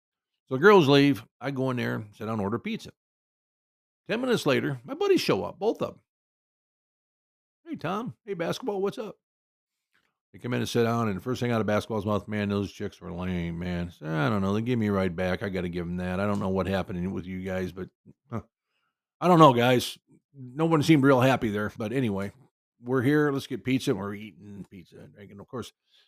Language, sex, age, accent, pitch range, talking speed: English, male, 50-69, American, 95-130 Hz, 230 wpm